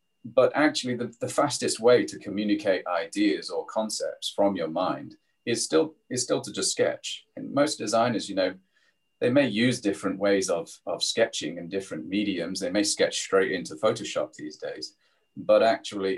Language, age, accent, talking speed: English, 30-49, British, 175 wpm